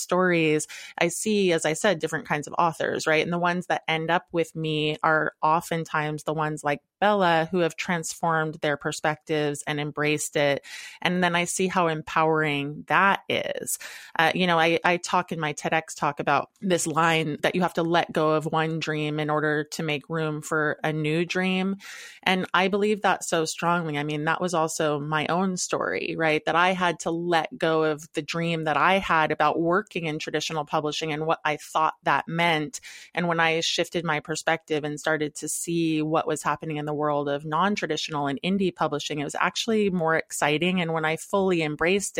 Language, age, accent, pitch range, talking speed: English, 20-39, American, 150-170 Hz, 200 wpm